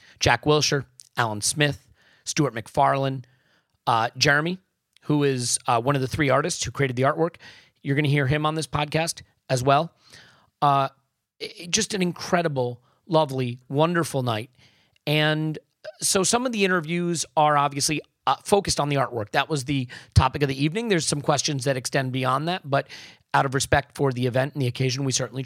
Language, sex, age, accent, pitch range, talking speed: English, male, 40-59, American, 130-160 Hz, 180 wpm